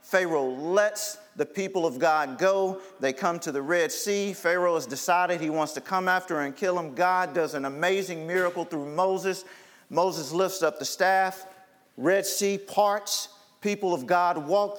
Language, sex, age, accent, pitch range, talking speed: English, male, 50-69, American, 140-185 Hz, 175 wpm